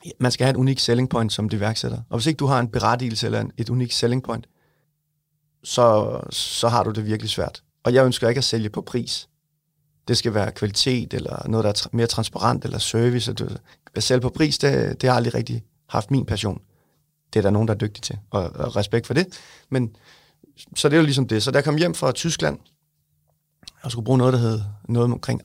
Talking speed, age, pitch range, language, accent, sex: 225 wpm, 30-49, 110-135 Hz, English, Danish, male